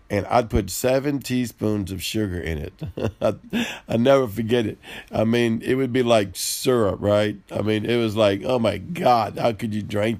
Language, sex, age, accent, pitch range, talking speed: English, male, 50-69, American, 105-130 Hz, 195 wpm